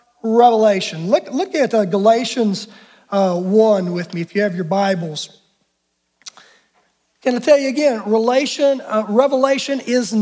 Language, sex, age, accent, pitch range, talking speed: English, male, 40-59, American, 210-290 Hz, 140 wpm